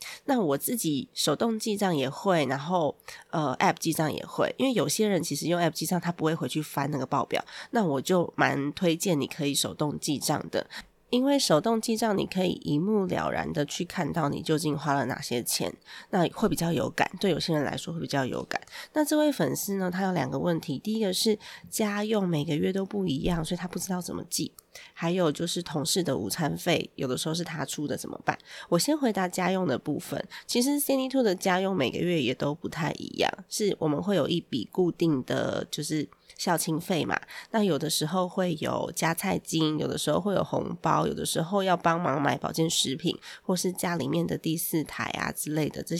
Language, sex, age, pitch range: Chinese, female, 20-39, 155-195 Hz